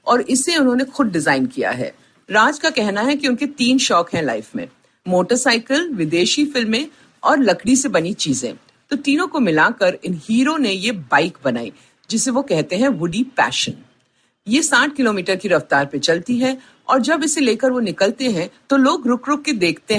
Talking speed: 155 wpm